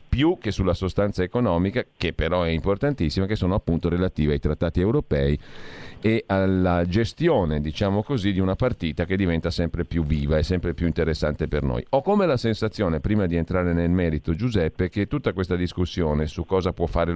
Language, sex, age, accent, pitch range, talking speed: Italian, male, 40-59, native, 85-105 Hz, 185 wpm